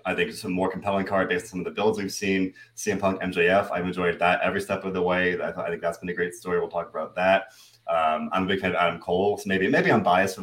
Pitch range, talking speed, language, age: 90-115 Hz, 280 wpm, English, 30-49